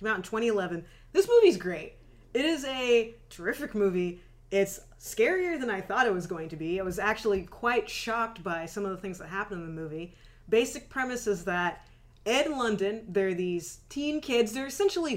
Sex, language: female, English